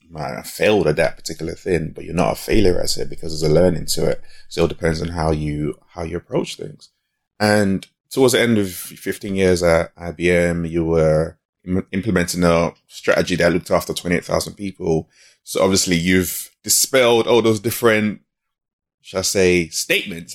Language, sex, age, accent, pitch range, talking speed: English, male, 20-39, British, 85-95 Hz, 180 wpm